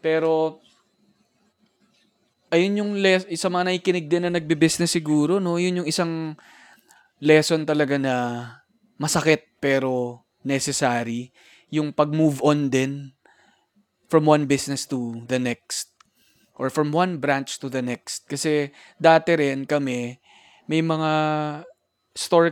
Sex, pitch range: male, 130-170 Hz